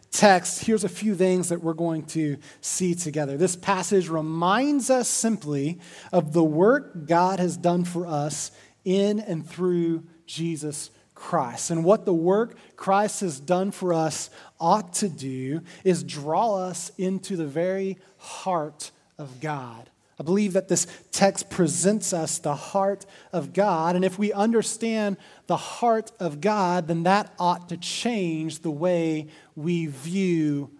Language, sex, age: English, male, 30-49